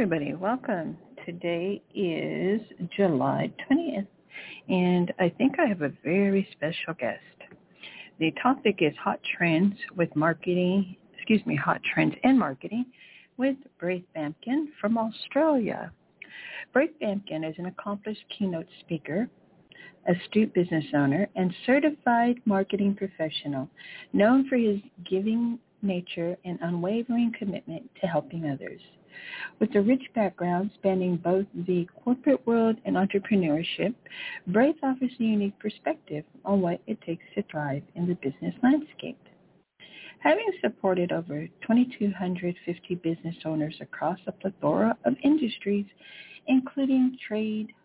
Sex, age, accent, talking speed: female, 60-79, American, 120 wpm